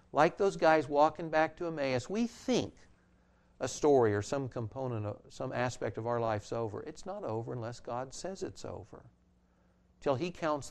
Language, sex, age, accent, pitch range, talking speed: English, male, 60-79, American, 105-140 Hz, 180 wpm